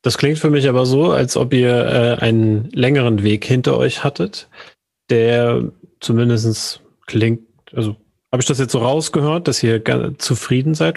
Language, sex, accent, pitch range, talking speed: German, male, German, 110-135 Hz, 165 wpm